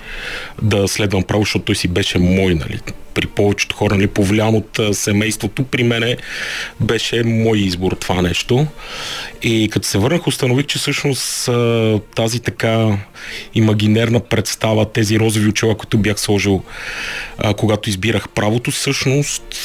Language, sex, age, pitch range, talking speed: Bulgarian, male, 30-49, 105-120 Hz, 135 wpm